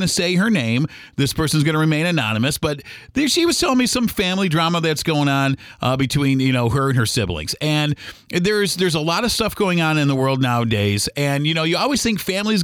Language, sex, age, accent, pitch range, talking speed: English, male, 40-59, American, 125-170 Hz, 235 wpm